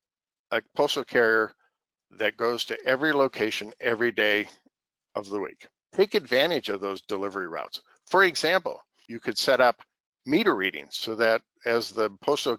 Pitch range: 110-140 Hz